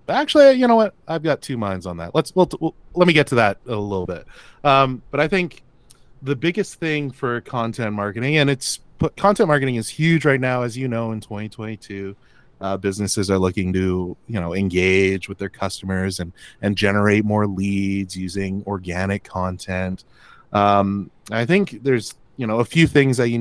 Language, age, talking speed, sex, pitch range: English, 30-49, 190 wpm, male, 95-130 Hz